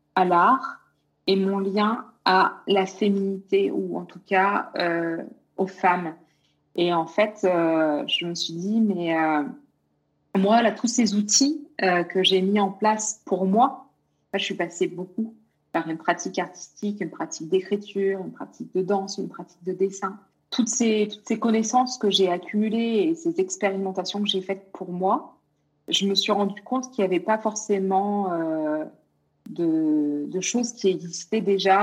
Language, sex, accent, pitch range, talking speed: French, female, French, 175-210 Hz, 170 wpm